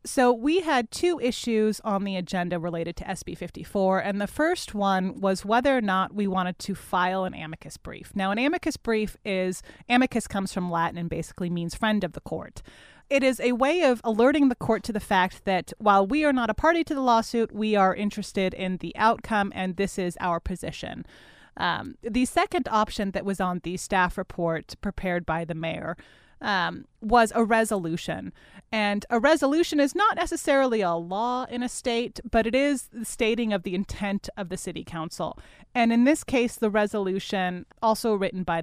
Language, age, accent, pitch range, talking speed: English, 30-49, American, 185-240 Hz, 195 wpm